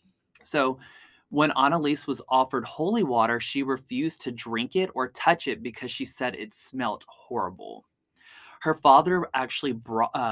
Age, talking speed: 20-39, 145 wpm